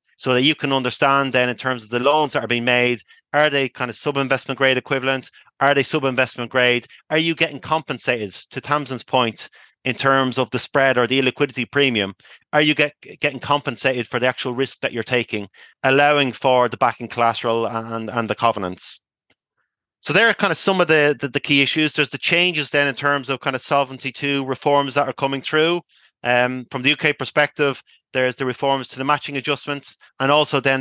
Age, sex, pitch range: 30-49, male, 120-145 Hz